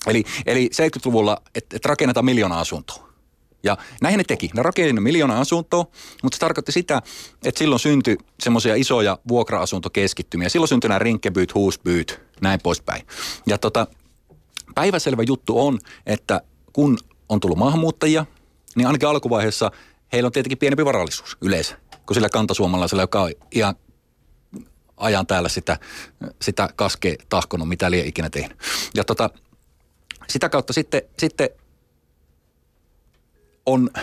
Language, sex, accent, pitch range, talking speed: Finnish, male, native, 90-130 Hz, 130 wpm